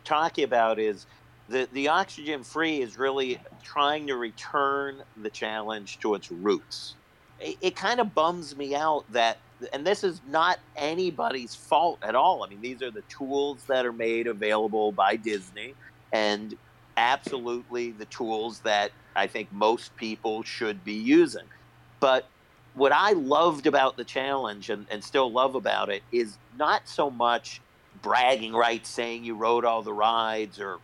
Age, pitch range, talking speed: 50-69, 110-135 Hz, 160 wpm